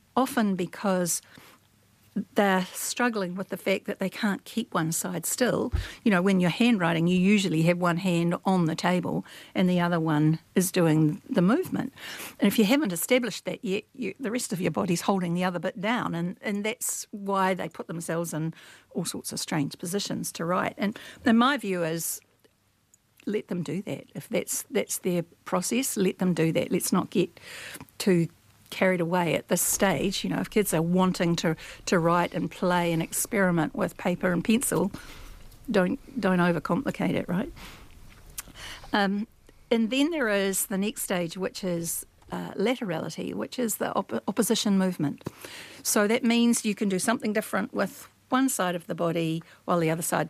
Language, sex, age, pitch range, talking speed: English, female, 60-79, 170-215 Hz, 185 wpm